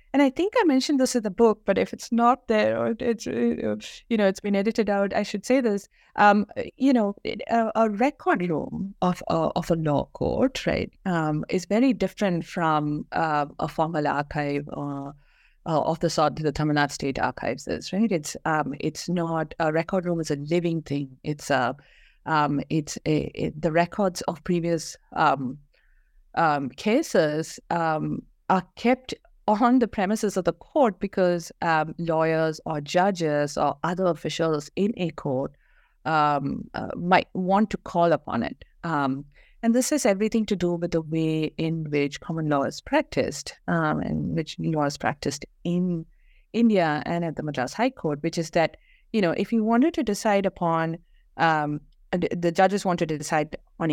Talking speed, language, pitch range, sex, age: 180 wpm, English, 155-215 Hz, female, 50-69